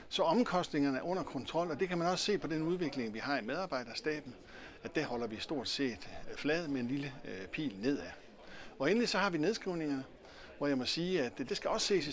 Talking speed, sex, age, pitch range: 230 wpm, male, 60-79, 125-155 Hz